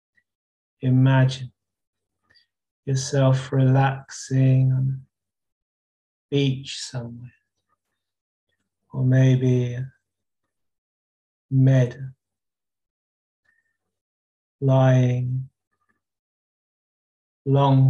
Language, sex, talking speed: English, male, 45 wpm